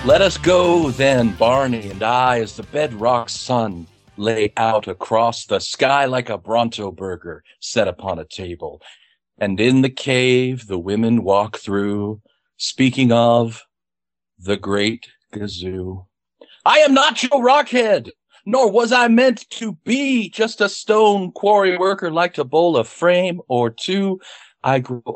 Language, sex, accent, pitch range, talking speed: English, male, American, 110-180 Hz, 150 wpm